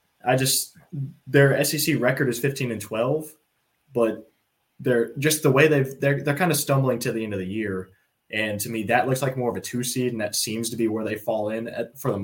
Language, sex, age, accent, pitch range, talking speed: English, male, 20-39, American, 105-130 Hz, 240 wpm